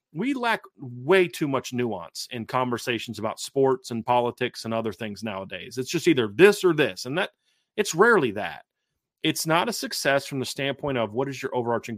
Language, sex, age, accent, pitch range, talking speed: English, male, 30-49, American, 125-165 Hz, 195 wpm